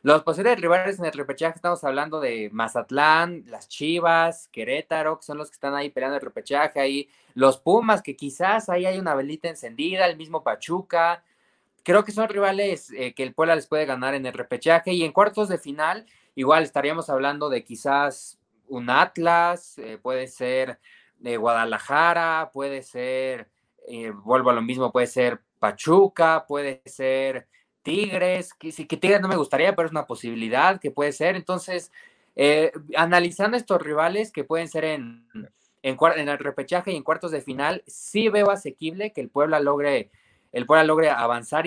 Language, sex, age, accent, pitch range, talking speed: Spanish, male, 20-39, Mexican, 135-175 Hz, 170 wpm